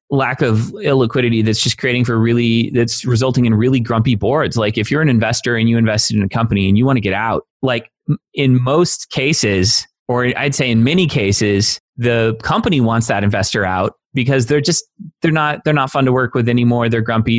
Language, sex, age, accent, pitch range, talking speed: English, male, 30-49, American, 110-130 Hz, 210 wpm